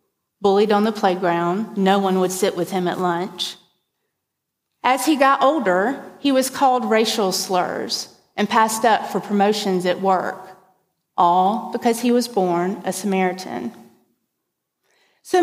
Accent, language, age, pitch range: American, English, 40-59, 185-260 Hz